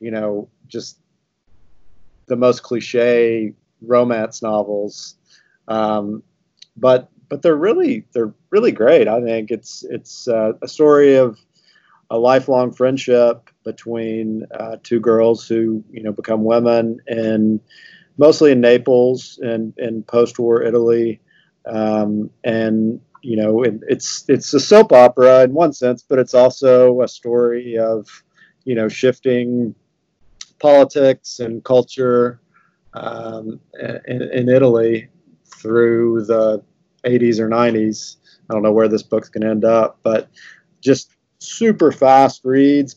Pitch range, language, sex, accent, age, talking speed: 110-130 Hz, English, male, American, 40-59, 130 wpm